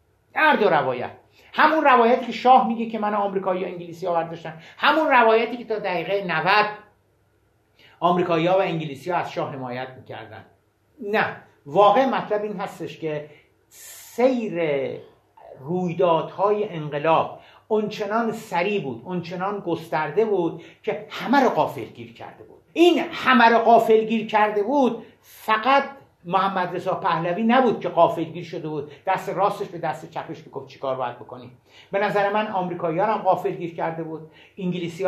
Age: 50-69